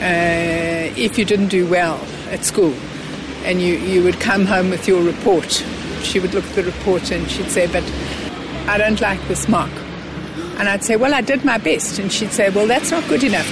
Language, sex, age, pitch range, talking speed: English, female, 60-79, 175-210 Hz, 215 wpm